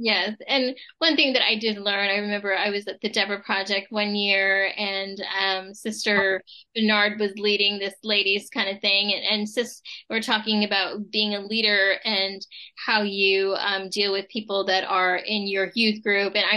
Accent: American